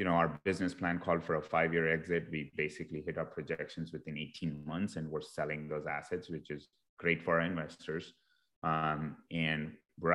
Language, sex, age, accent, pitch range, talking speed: English, male, 30-49, Indian, 75-85 Hz, 190 wpm